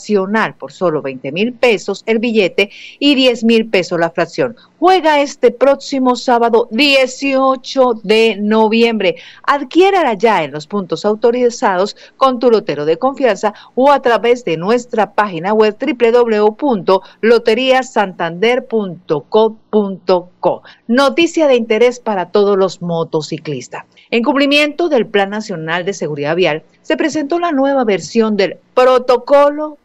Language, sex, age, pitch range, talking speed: Spanish, female, 50-69, 175-250 Hz, 125 wpm